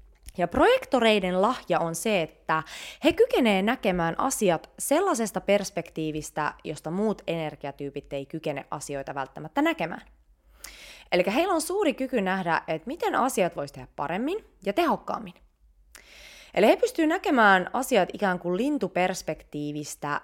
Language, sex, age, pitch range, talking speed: English, female, 20-39, 160-250 Hz, 125 wpm